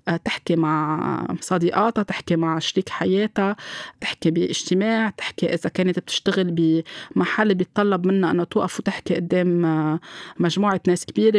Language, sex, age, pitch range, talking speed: Arabic, female, 20-39, 175-200 Hz, 120 wpm